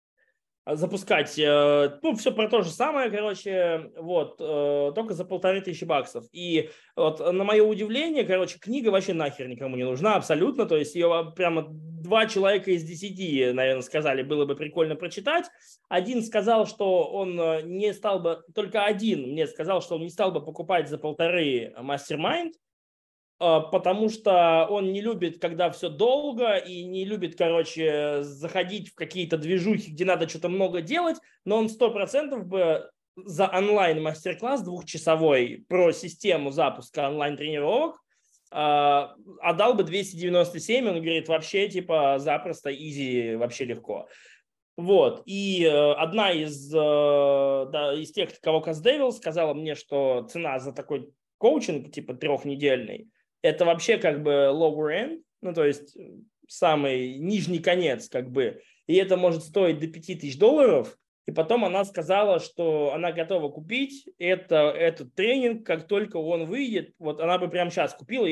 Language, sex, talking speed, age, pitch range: Russian, male, 145 wpm, 20-39, 155-205 Hz